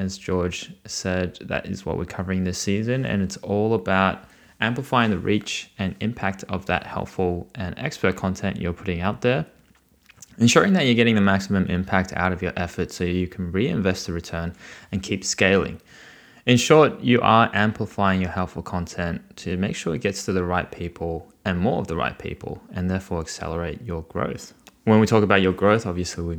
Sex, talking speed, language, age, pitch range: male, 195 wpm, English, 20-39, 90-105 Hz